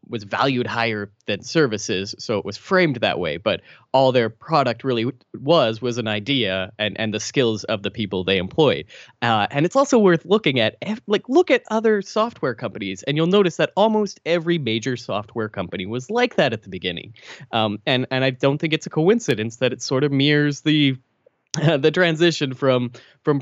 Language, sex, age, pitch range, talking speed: English, male, 20-39, 110-155 Hz, 195 wpm